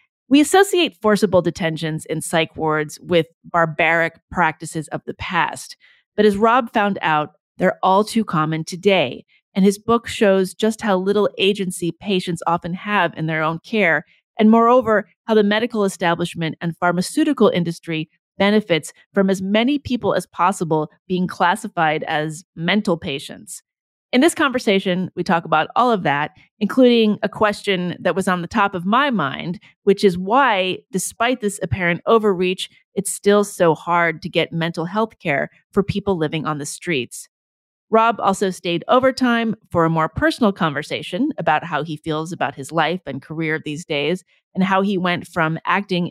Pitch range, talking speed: 165-210 Hz, 165 wpm